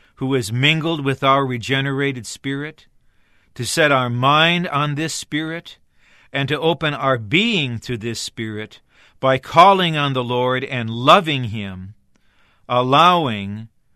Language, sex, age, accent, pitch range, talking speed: English, male, 50-69, American, 110-150 Hz, 135 wpm